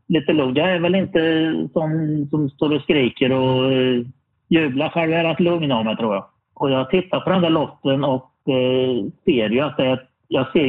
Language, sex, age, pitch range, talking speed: Swedish, male, 40-59, 115-150 Hz, 195 wpm